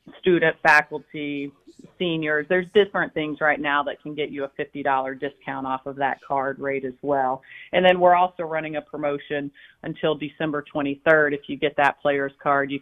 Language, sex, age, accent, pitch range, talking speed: English, female, 40-59, American, 145-165 Hz, 190 wpm